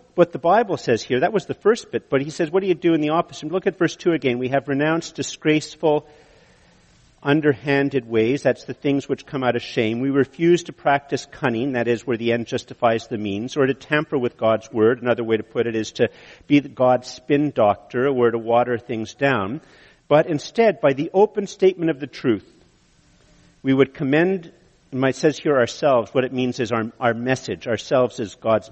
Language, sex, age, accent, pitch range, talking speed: English, male, 50-69, American, 130-170 Hz, 210 wpm